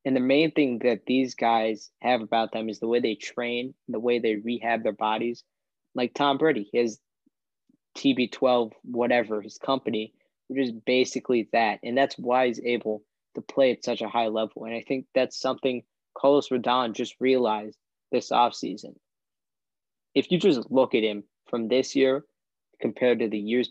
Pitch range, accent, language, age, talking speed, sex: 115-130 Hz, American, English, 20-39, 175 wpm, male